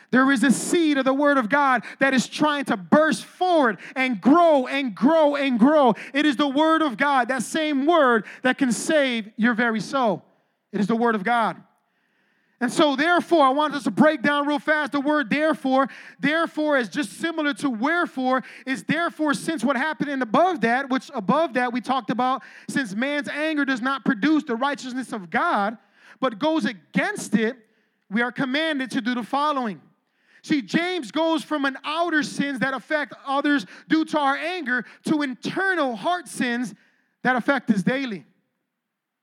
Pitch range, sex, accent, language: 250-310 Hz, male, American, English